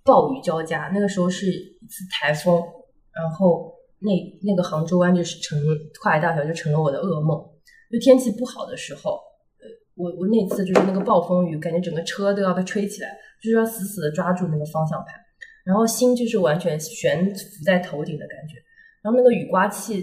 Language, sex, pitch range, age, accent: Chinese, female, 175-225 Hz, 20-39, native